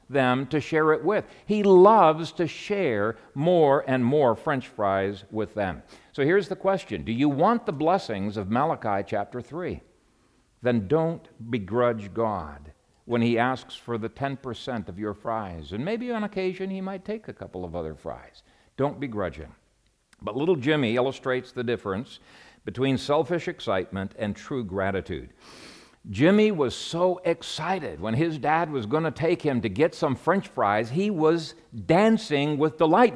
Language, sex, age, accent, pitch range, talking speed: English, male, 60-79, American, 115-170 Hz, 165 wpm